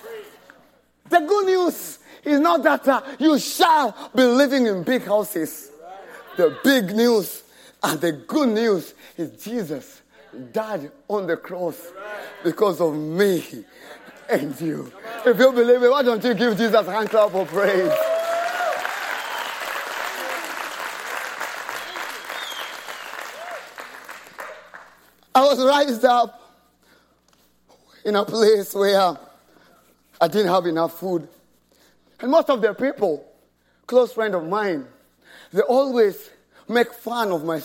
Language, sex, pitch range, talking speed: English, male, 185-255 Hz, 115 wpm